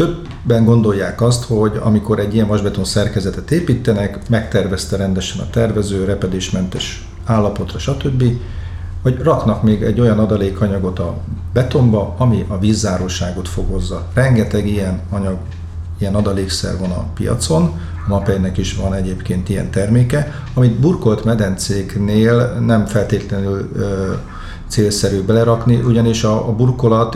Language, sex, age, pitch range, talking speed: Hungarian, male, 40-59, 95-115 Hz, 115 wpm